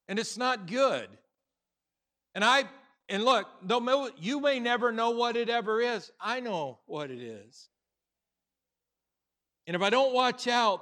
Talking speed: 155 wpm